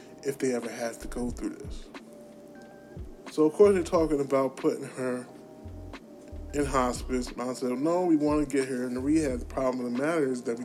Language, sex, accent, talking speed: English, male, American, 210 wpm